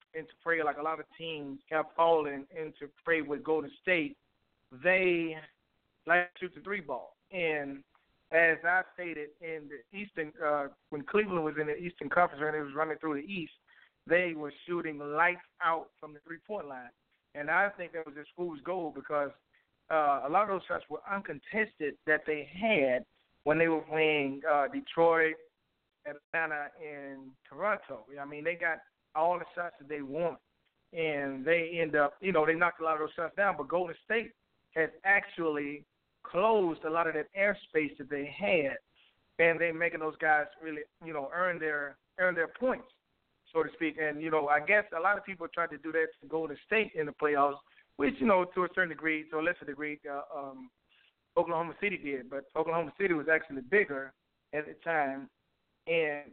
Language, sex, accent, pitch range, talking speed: English, male, American, 145-170 Hz, 190 wpm